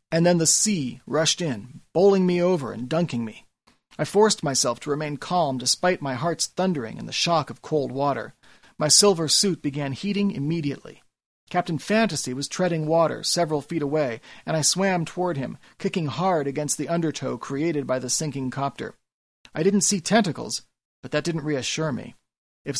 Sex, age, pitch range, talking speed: male, 40-59, 140-175 Hz, 175 wpm